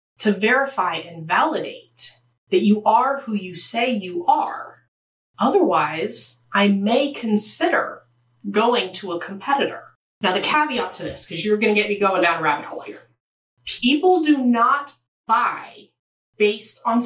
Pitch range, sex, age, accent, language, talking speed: 195-320 Hz, female, 30-49, American, English, 150 wpm